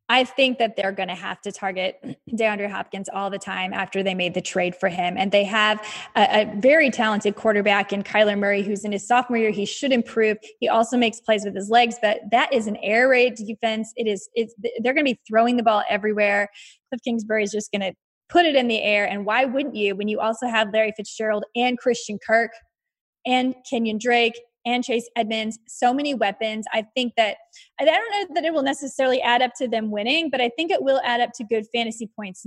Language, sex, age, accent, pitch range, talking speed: English, female, 20-39, American, 210-255 Hz, 230 wpm